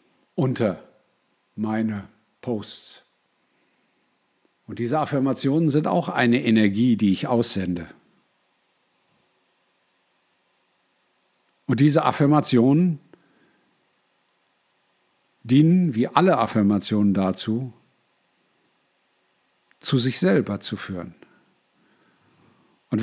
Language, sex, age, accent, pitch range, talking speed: German, male, 50-69, German, 110-135 Hz, 70 wpm